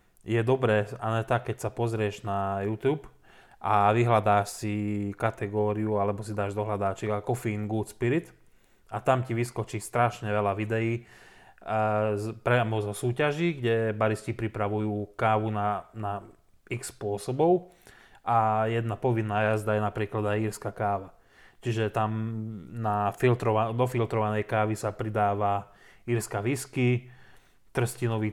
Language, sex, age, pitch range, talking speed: Slovak, male, 20-39, 105-115 Hz, 125 wpm